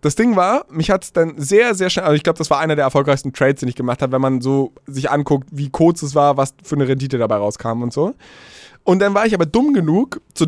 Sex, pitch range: male, 135-160 Hz